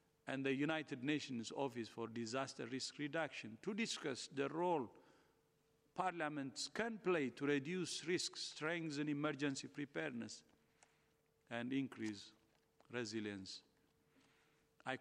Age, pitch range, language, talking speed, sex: 50-69, 120-155 Hz, English, 105 wpm, male